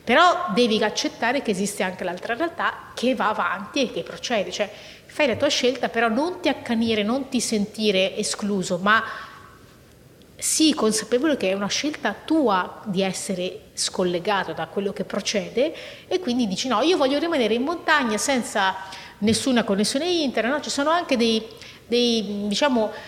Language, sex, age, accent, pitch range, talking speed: Italian, female, 30-49, native, 190-245 Hz, 160 wpm